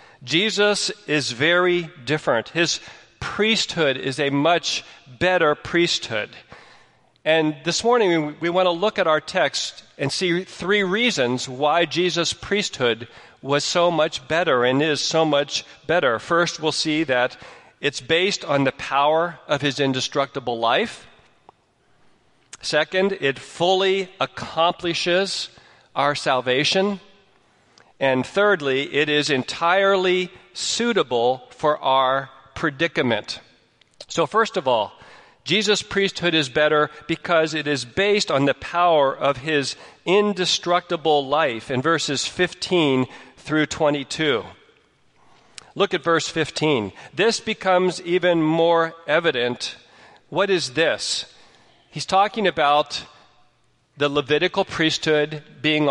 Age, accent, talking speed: 40-59, American, 115 wpm